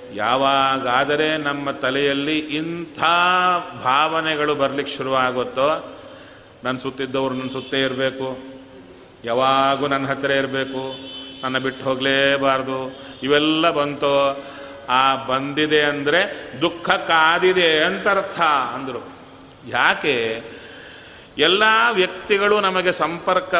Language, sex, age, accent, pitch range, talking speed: Kannada, male, 40-59, native, 140-195 Hz, 85 wpm